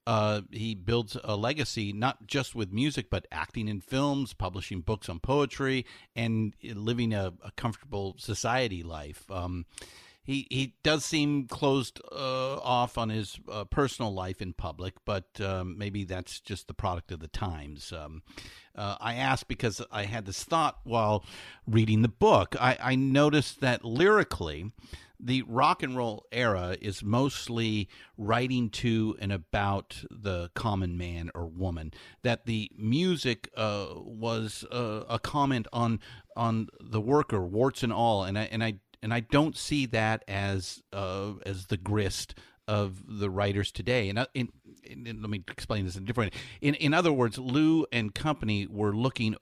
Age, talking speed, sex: 50-69, 170 wpm, male